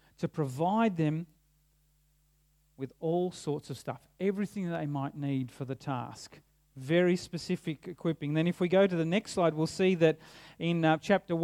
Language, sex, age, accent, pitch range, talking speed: English, male, 40-59, Australian, 150-205 Hz, 175 wpm